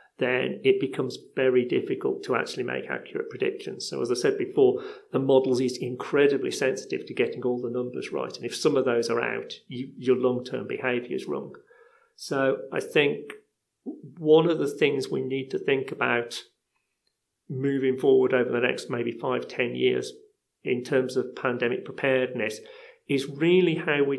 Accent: British